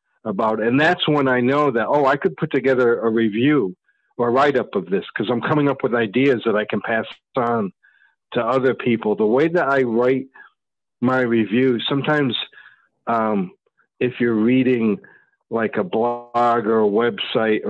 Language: English